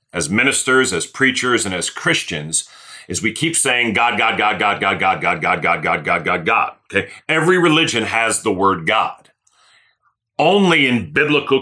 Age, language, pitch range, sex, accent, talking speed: 40-59, English, 105-135 Hz, male, American, 175 wpm